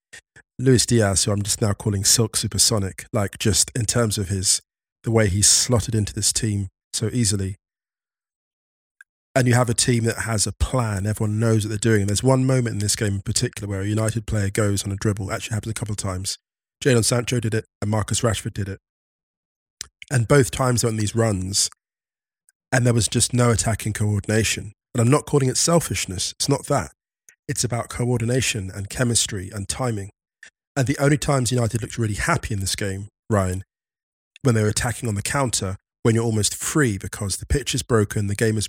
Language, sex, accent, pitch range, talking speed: English, male, British, 100-120 Hz, 205 wpm